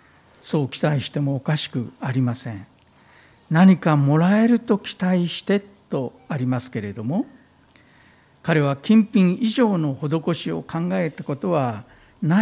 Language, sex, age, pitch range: Japanese, male, 60-79, 130-200 Hz